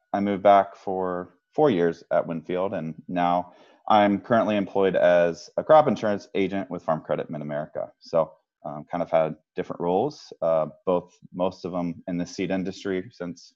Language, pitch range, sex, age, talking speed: English, 80-100 Hz, male, 30-49, 175 wpm